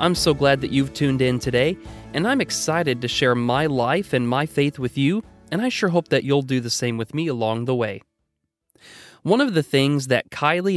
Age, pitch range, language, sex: 30-49, 120-160 Hz, English, male